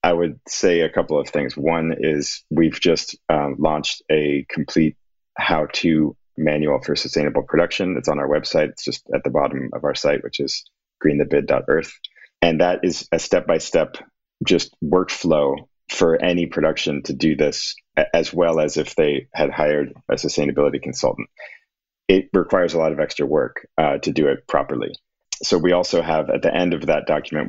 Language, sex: English, male